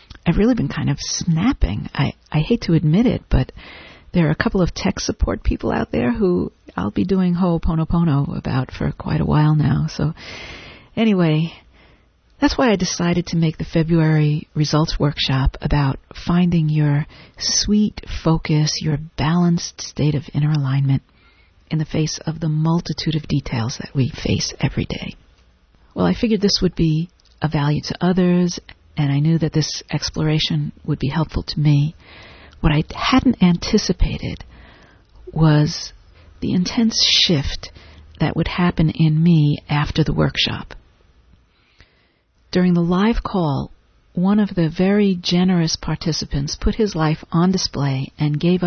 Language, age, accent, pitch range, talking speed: English, 50-69, American, 150-180 Hz, 155 wpm